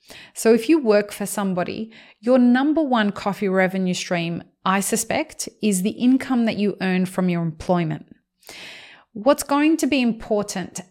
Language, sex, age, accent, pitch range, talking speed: English, female, 30-49, Australian, 190-225 Hz, 155 wpm